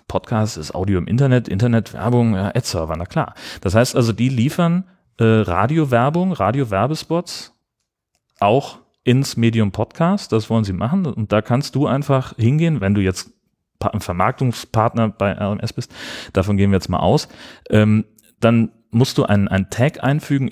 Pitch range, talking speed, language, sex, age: 105-135 Hz, 160 wpm, German, male, 30-49